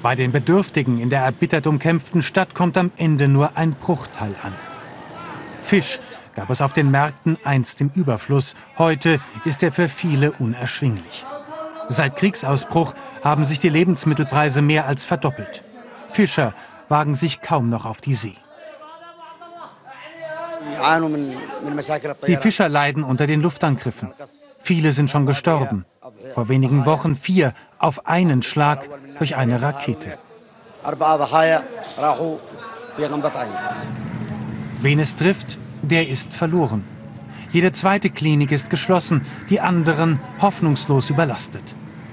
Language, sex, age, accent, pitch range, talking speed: German, male, 40-59, German, 140-175 Hz, 115 wpm